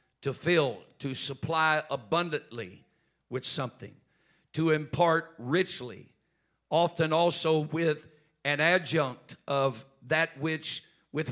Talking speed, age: 100 wpm, 50-69